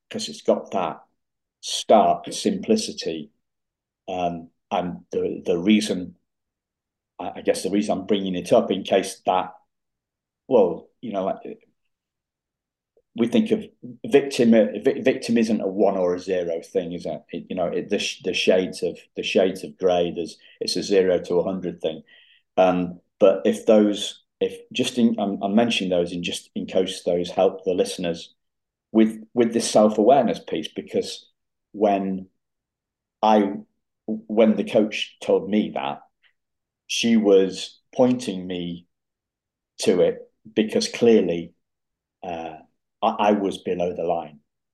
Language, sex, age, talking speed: English, male, 40-59, 145 wpm